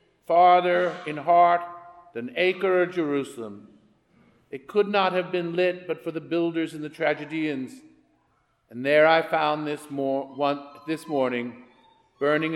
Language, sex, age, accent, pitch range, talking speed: English, male, 50-69, American, 145-180 Hz, 135 wpm